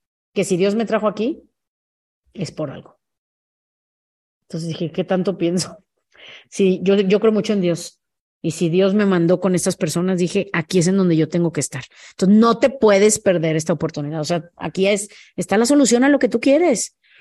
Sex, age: female, 30-49